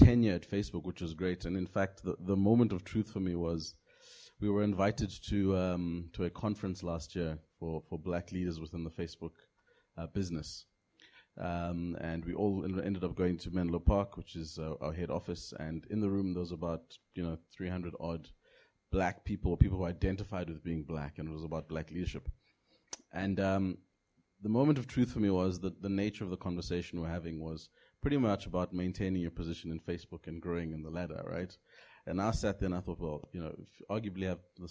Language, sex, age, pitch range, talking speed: English, male, 30-49, 85-95 Hz, 220 wpm